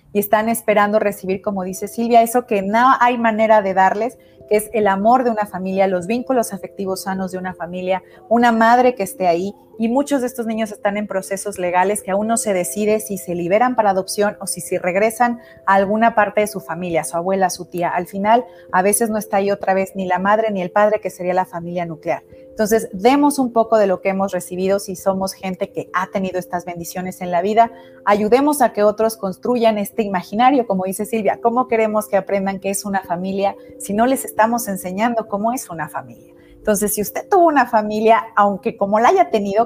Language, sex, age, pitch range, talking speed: Spanish, female, 30-49, 185-225 Hz, 220 wpm